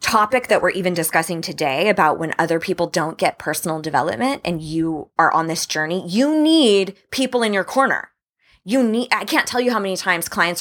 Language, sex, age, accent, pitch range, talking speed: English, female, 20-39, American, 160-230 Hz, 205 wpm